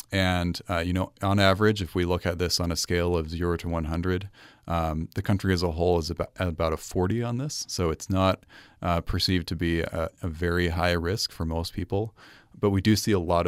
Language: English